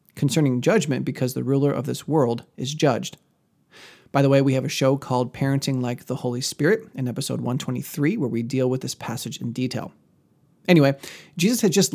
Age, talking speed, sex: 30-49, 190 wpm, male